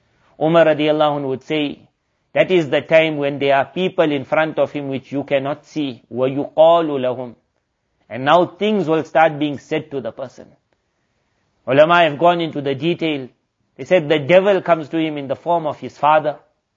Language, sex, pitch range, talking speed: English, male, 140-175 Hz, 190 wpm